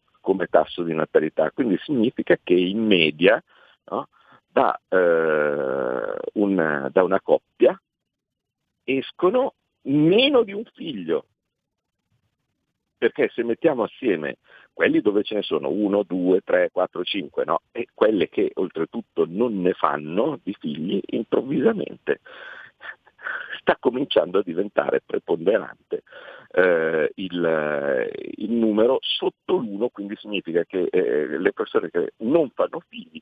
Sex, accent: male, native